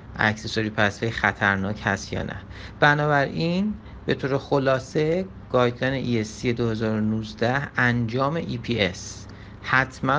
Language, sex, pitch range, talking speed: Persian, male, 110-145 Hz, 95 wpm